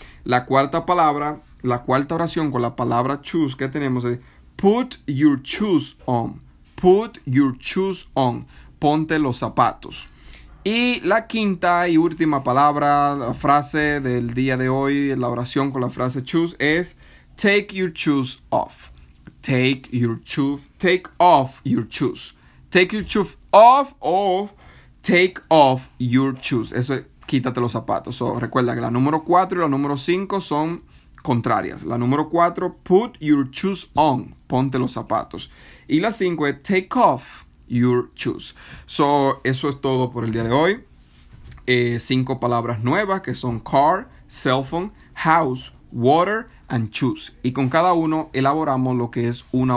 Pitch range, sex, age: 120-160 Hz, male, 30-49